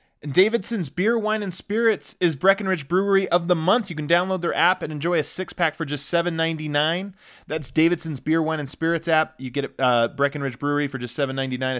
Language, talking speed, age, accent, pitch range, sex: English, 195 wpm, 20-39, American, 140-190 Hz, male